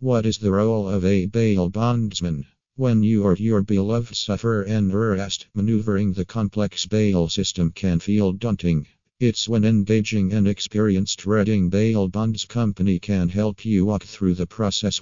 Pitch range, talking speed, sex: 95-110 Hz, 160 wpm, male